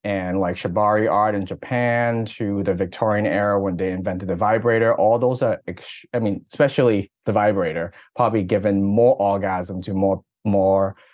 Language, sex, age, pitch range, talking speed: English, male, 30-49, 95-115 Hz, 165 wpm